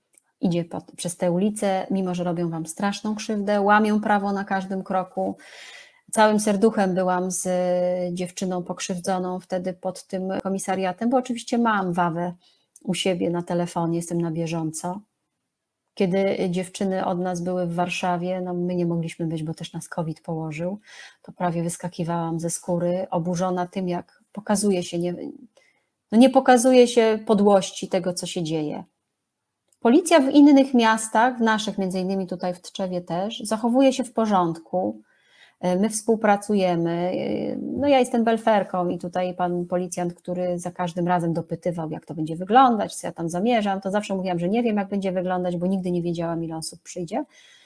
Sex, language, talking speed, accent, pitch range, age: female, Polish, 160 wpm, native, 175-210 Hz, 30-49